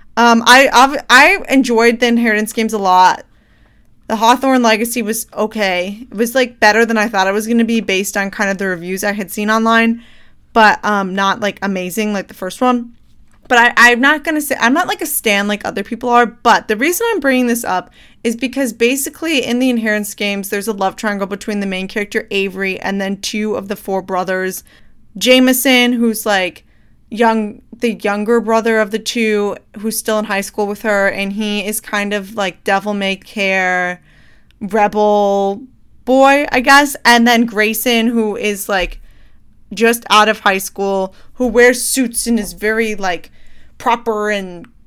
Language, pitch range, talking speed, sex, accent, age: English, 195-235 Hz, 190 wpm, female, American, 20-39